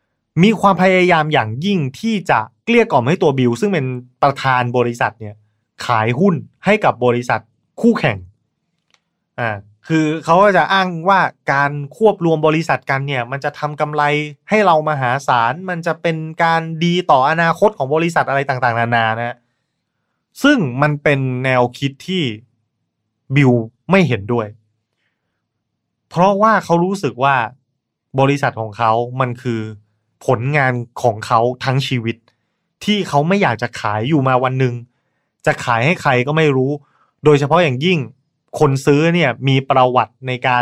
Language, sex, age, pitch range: Thai, male, 20-39, 120-165 Hz